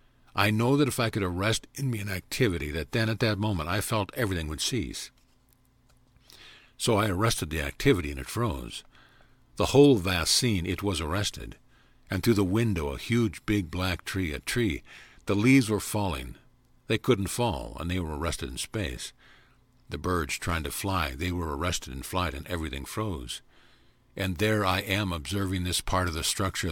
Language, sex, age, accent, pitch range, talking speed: English, male, 50-69, American, 90-125 Hz, 185 wpm